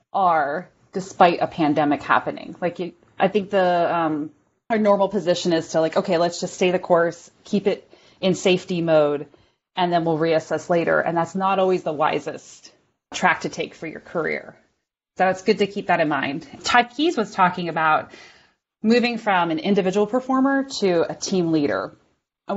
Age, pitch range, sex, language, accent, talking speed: 30-49, 165-200 Hz, female, English, American, 180 wpm